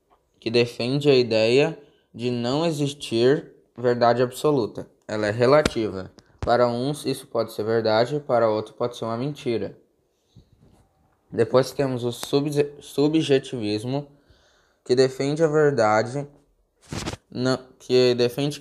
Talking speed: 110 wpm